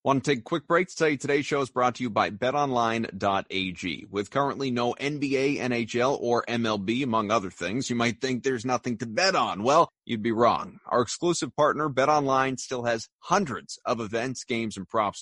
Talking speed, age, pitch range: 200 wpm, 30-49, 105-135 Hz